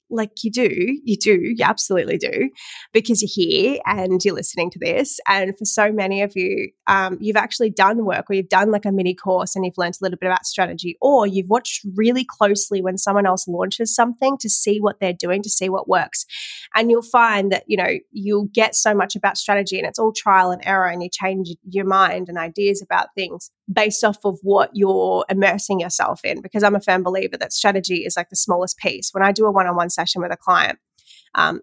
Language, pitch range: English, 185-215 Hz